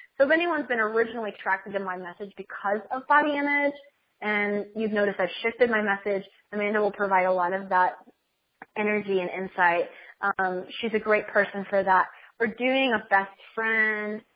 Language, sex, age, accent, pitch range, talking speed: English, female, 20-39, American, 200-240 Hz, 175 wpm